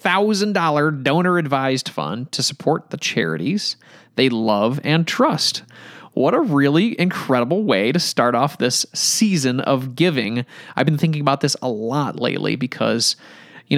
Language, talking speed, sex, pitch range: English, 155 wpm, male, 135-175 Hz